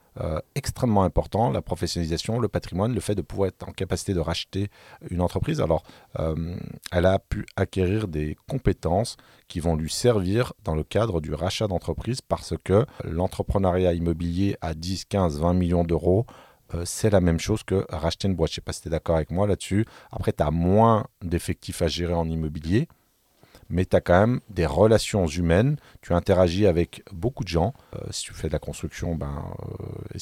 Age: 40-59